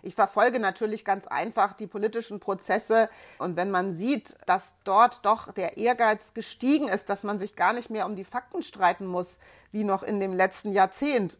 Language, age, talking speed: German, 30-49, 190 wpm